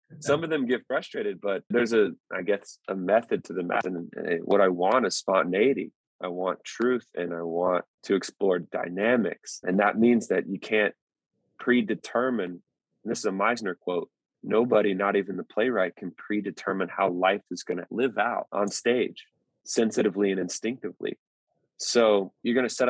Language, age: English, 20-39